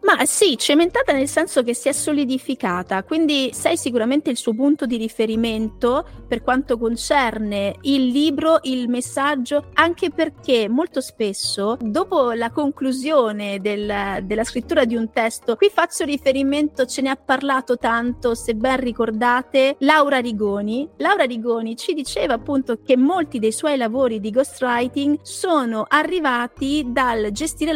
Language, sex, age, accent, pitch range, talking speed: Italian, female, 40-59, native, 225-280 Hz, 145 wpm